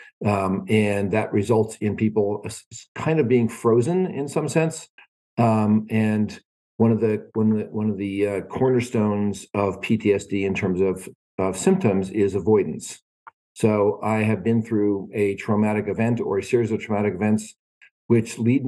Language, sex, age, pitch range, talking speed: English, male, 50-69, 95-115 Hz, 165 wpm